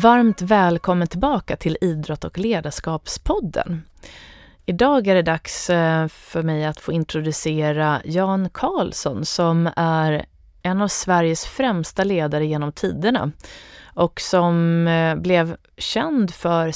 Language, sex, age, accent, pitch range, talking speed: Swedish, female, 30-49, native, 160-190 Hz, 115 wpm